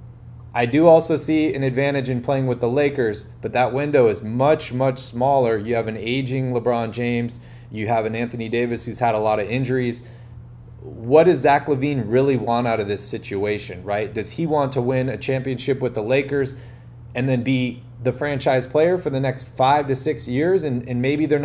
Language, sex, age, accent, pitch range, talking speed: English, male, 30-49, American, 115-135 Hz, 205 wpm